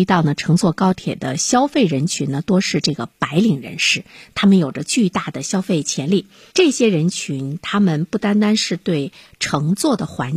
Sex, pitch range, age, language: female, 155-220 Hz, 50-69, Chinese